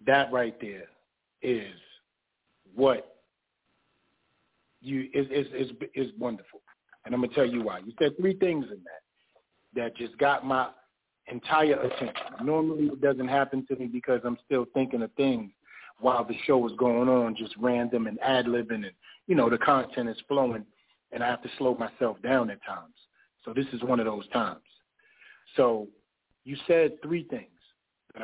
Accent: American